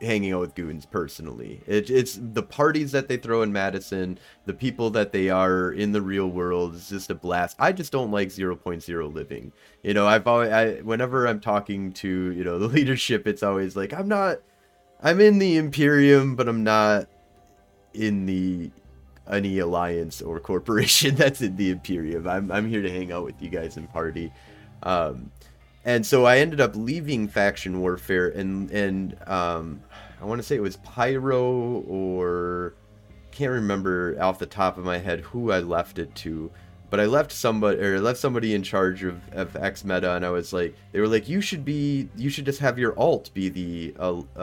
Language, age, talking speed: English, 30-49, 190 wpm